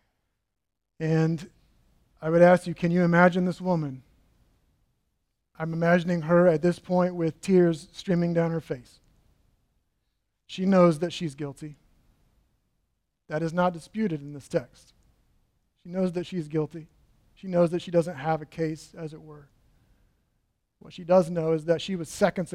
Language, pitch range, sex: English, 155-185 Hz, male